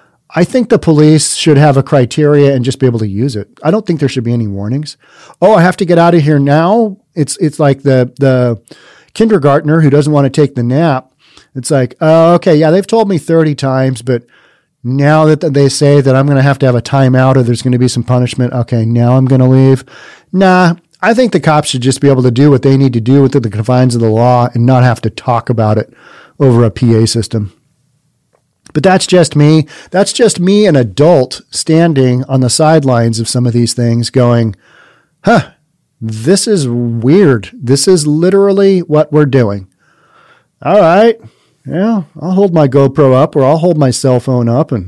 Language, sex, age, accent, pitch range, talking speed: English, male, 40-59, American, 125-165 Hz, 215 wpm